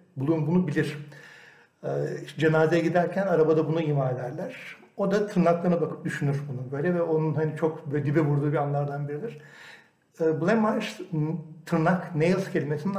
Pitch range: 150-175 Hz